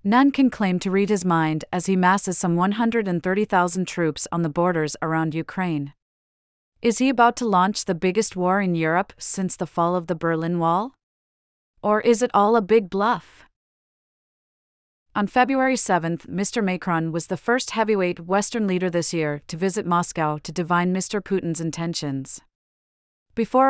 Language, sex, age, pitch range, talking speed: English, female, 30-49, 160-205 Hz, 160 wpm